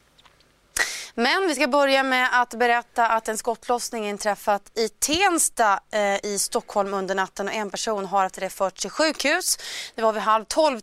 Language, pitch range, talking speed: Swedish, 195-245 Hz, 170 wpm